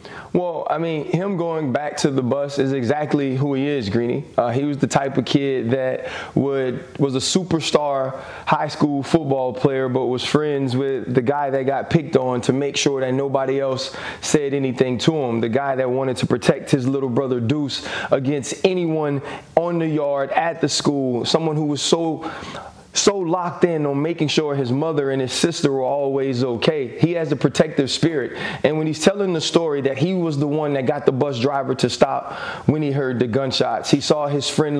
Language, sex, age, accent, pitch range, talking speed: English, male, 20-39, American, 135-155 Hz, 205 wpm